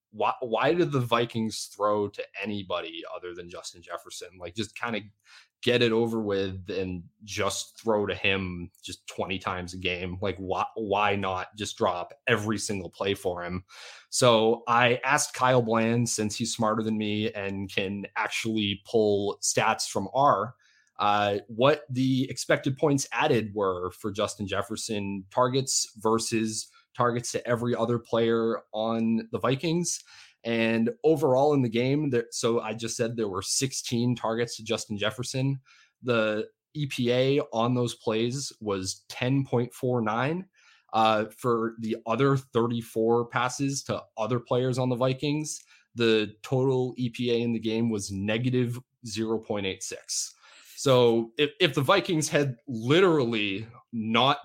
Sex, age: male, 20-39